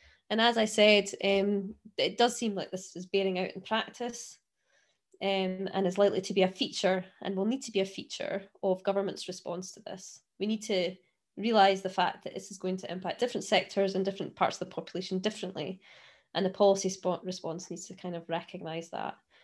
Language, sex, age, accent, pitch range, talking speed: English, female, 20-39, British, 185-220 Hz, 205 wpm